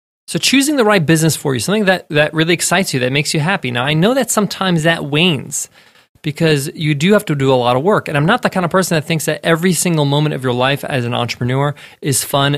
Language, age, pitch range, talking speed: English, 20-39, 140-190 Hz, 260 wpm